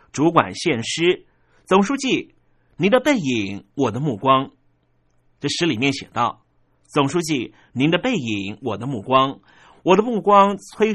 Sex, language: male, Chinese